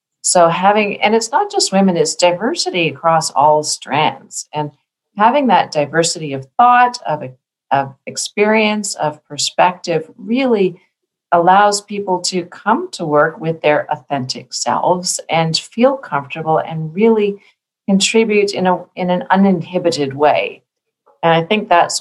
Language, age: English, 40-59